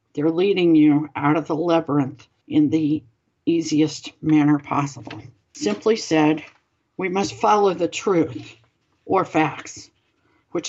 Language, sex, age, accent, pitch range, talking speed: English, female, 60-79, American, 150-180 Hz, 125 wpm